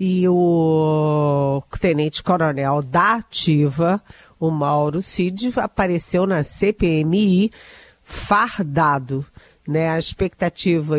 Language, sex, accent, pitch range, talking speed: Portuguese, female, Brazilian, 150-185 Hz, 85 wpm